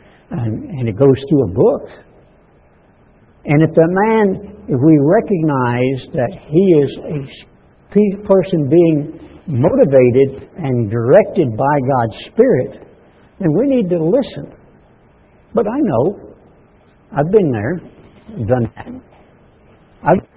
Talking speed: 120 wpm